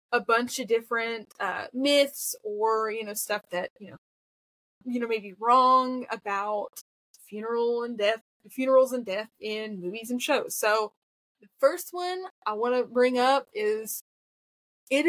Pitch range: 225-285 Hz